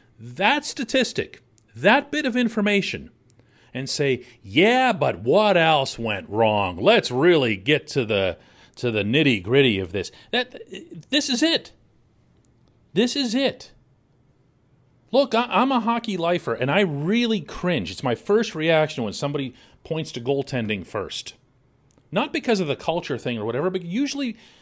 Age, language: 40-59, English